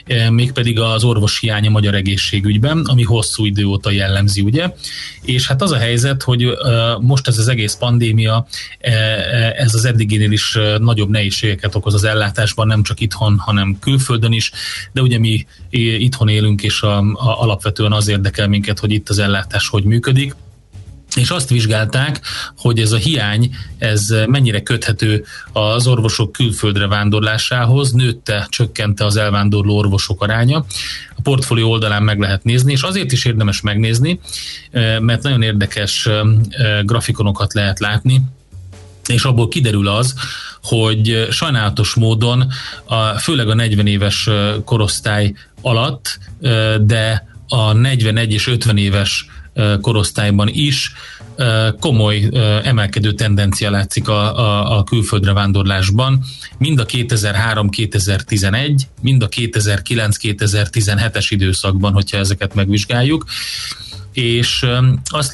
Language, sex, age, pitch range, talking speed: Hungarian, male, 30-49, 105-120 Hz, 120 wpm